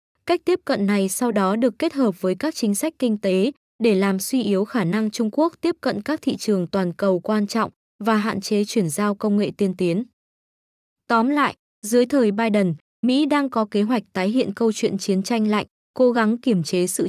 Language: Vietnamese